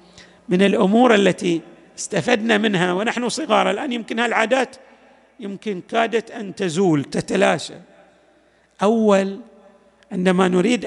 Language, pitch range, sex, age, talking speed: Arabic, 190-245 Hz, male, 40-59, 100 wpm